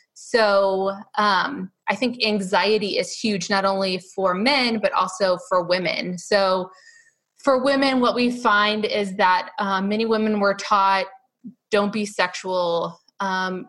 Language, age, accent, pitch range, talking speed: English, 20-39, American, 185-225 Hz, 140 wpm